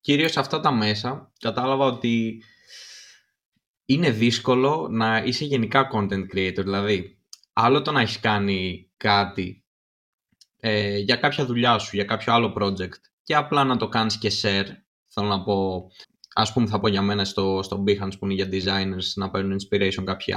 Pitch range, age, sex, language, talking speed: 100-125 Hz, 20-39, male, Greek, 165 wpm